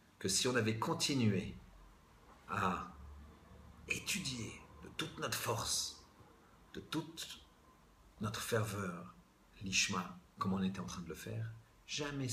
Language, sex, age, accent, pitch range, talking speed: French, male, 50-69, French, 85-105 Hz, 120 wpm